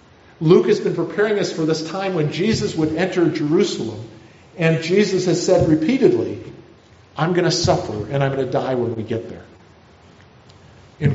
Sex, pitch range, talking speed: male, 140-180 Hz, 170 wpm